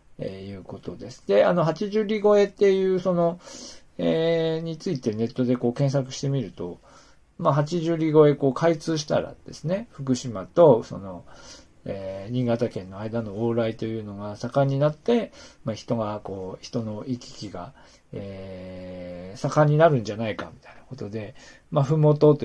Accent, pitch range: native, 105-155 Hz